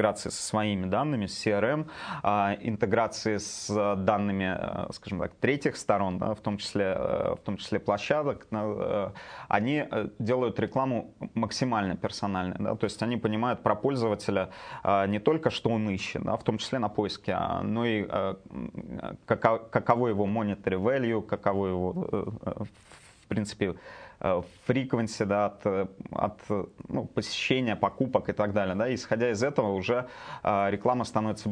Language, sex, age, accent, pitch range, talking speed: Russian, male, 30-49, native, 100-120 Hz, 135 wpm